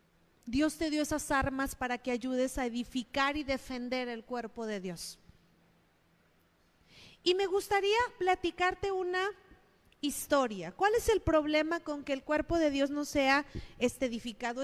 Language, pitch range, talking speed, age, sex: Spanish, 235-320 Hz, 150 wpm, 40-59, female